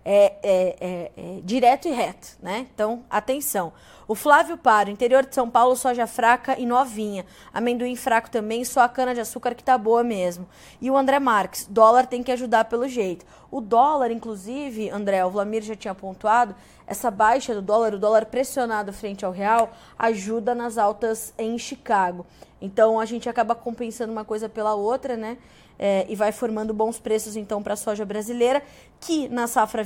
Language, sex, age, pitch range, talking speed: Portuguese, female, 20-39, 215-245 Hz, 175 wpm